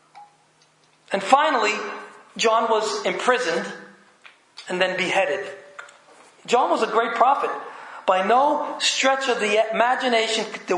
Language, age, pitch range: English, 40-59, 200-270 Hz